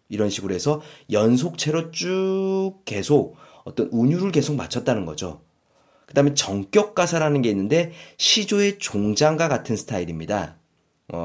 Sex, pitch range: male, 110-180 Hz